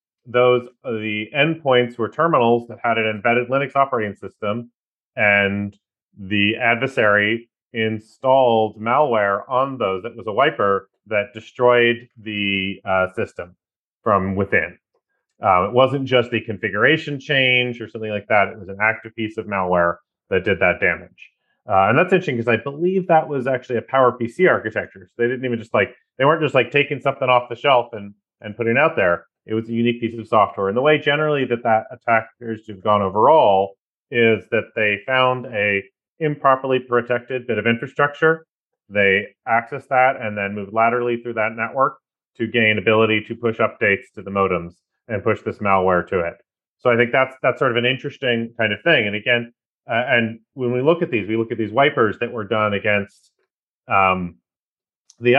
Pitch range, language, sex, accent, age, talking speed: 105-130 Hz, English, male, American, 30-49, 185 wpm